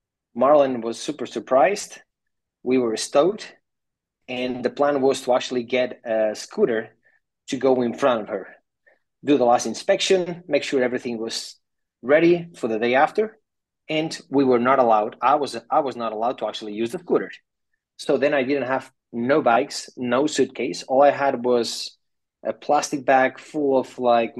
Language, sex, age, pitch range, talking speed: English, male, 30-49, 115-145 Hz, 170 wpm